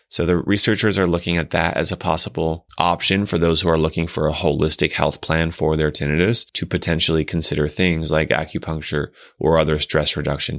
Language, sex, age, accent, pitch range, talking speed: English, male, 20-39, American, 80-95 Hz, 195 wpm